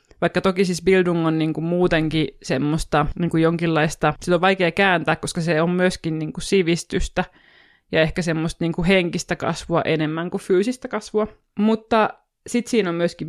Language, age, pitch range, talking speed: Finnish, 20-39, 160-195 Hz, 160 wpm